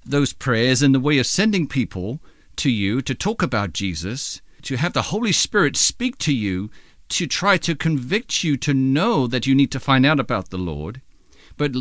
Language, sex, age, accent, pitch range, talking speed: English, male, 50-69, American, 120-160 Hz, 200 wpm